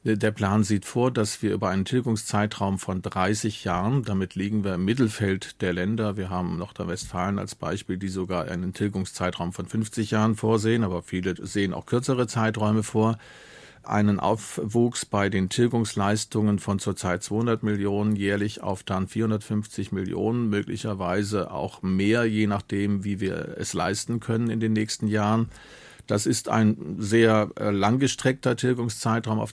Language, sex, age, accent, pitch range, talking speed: German, male, 40-59, German, 100-115 Hz, 150 wpm